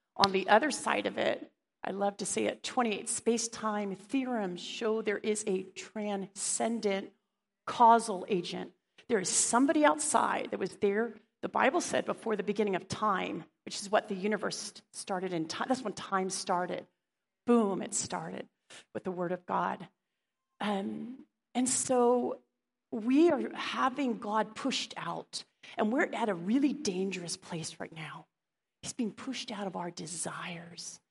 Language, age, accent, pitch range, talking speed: English, 40-59, American, 195-250 Hz, 155 wpm